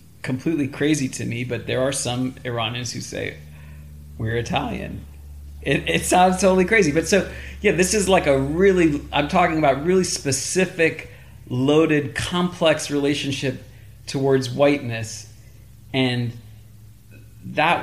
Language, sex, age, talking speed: English, male, 40-59, 130 wpm